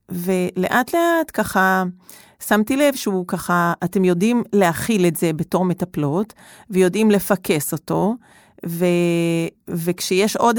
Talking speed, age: 115 wpm, 40-59